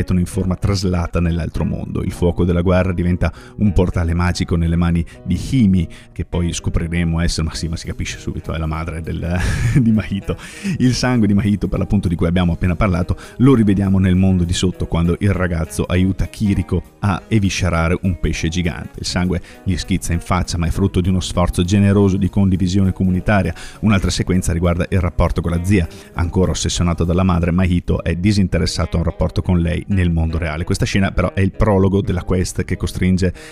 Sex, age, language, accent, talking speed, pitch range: male, 30-49, Italian, native, 195 wpm, 85-100 Hz